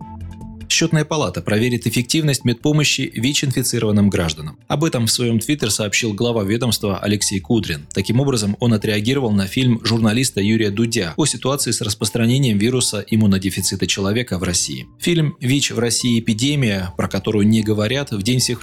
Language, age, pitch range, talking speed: Russian, 20-39, 100-130 Hz, 150 wpm